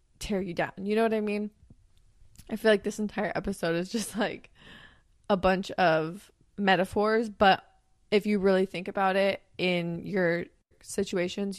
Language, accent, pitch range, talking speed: English, American, 185-220 Hz, 160 wpm